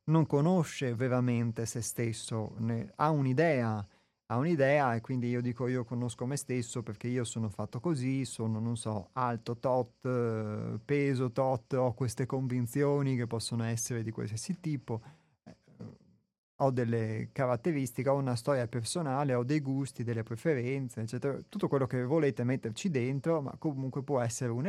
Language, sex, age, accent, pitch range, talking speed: Italian, male, 30-49, native, 115-140 Hz, 155 wpm